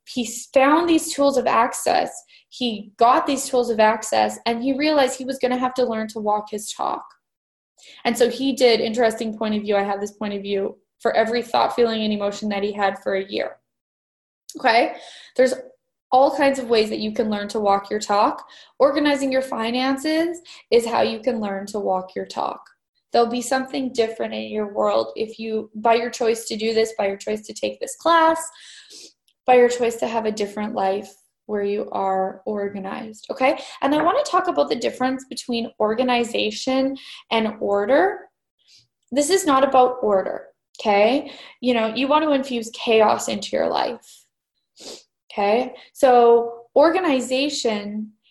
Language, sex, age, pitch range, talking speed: English, female, 10-29, 210-270 Hz, 180 wpm